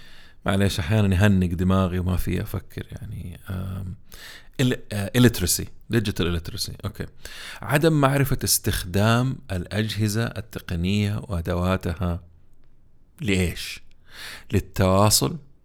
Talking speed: 75 wpm